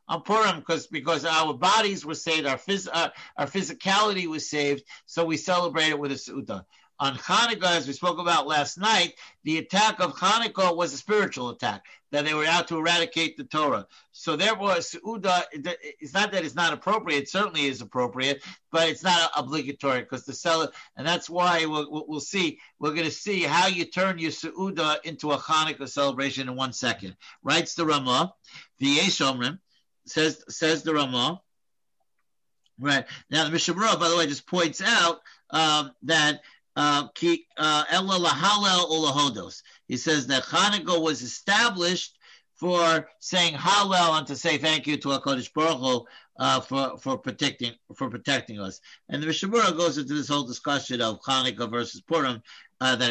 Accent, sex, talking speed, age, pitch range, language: American, male, 170 wpm, 60-79, 140-175 Hz, English